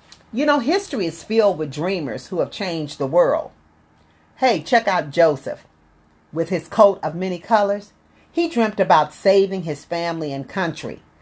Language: English